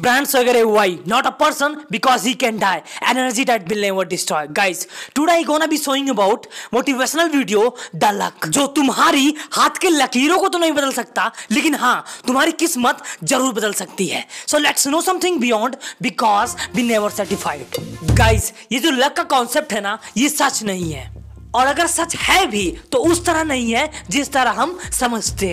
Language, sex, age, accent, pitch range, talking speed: Hindi, female, 20-39, native, 240-315 Hz, 180 wpm